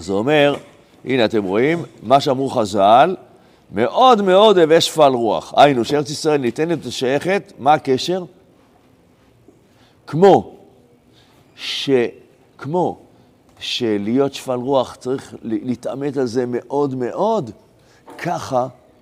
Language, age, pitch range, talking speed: Hebrew, 50-69, 105-140 Hz, 105 wpm